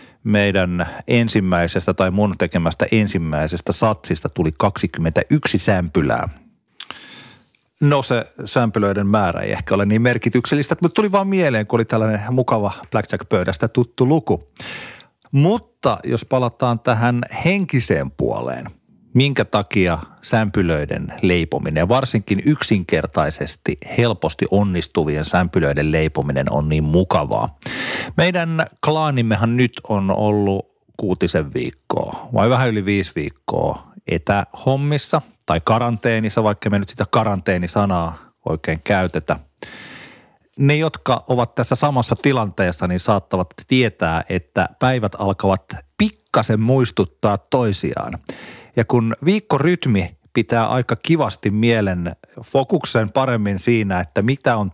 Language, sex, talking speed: Finnish, male, 110 wpm